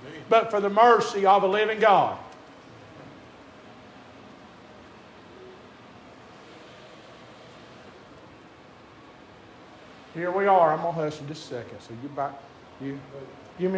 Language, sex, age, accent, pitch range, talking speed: English, male, 50-69, American, 135-185 Hz, 95 wpm